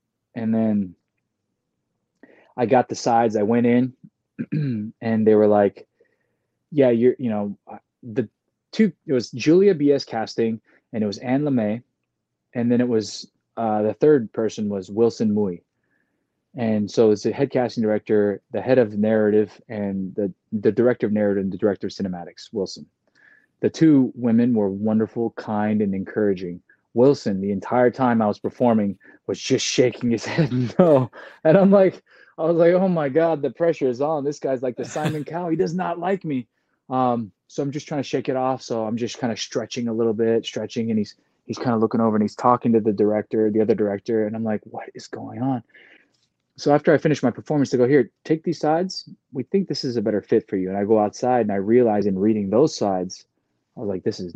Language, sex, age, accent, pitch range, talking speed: English, male, 20-39, American, 105-140 Hz, 205 wpm